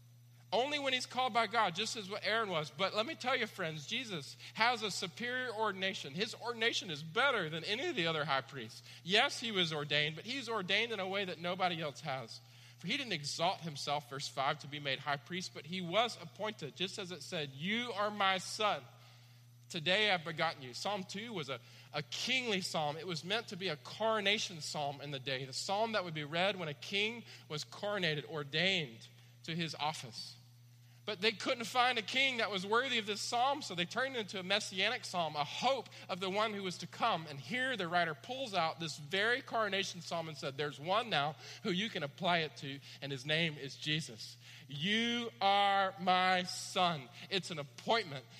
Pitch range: 145-210 Hz